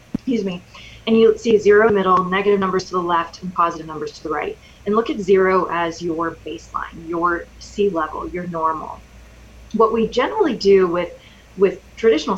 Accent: American